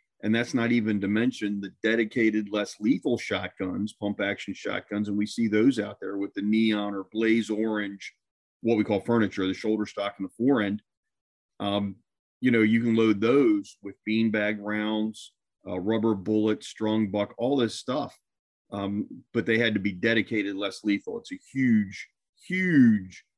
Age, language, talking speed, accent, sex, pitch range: 40-59, English, 170 wpm, American, male, 100-115 Hz